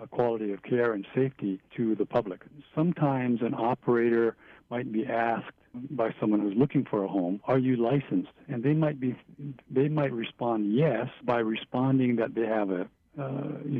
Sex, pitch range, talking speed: male, 110-135 Hz, 180 wpm